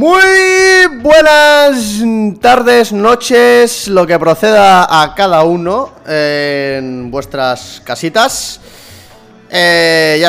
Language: Spanish